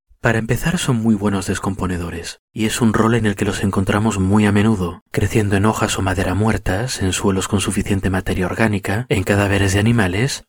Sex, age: male, 30-49